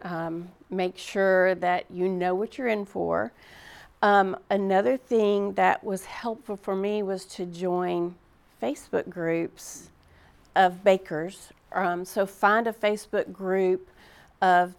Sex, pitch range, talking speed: female, 180-210 Hz, 130 wpm